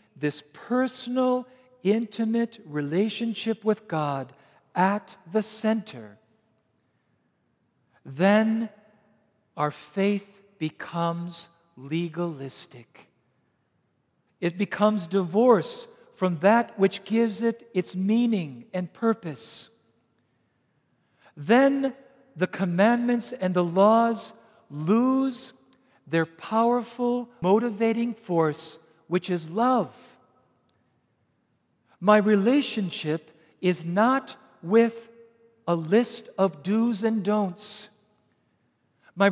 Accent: American